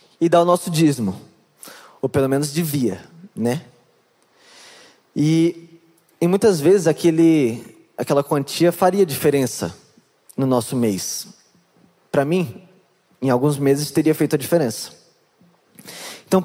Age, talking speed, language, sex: 20-39, 115 wpm, Portuguese, male